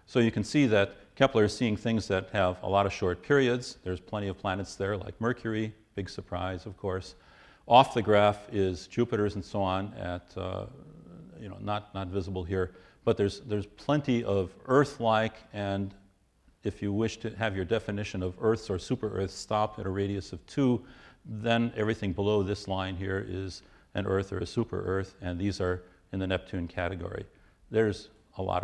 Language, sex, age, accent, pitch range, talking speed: English, male, 40-59, American, 95-110 Hz, 185 wpm